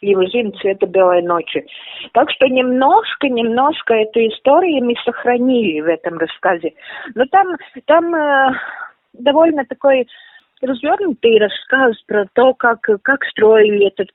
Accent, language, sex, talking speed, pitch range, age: native, Russian, female, 125 wpm, 210-280 Hz, 30-49